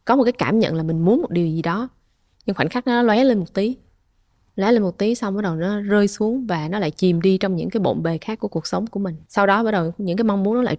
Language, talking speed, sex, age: Vietnamese, 310 wpm, female, 20-39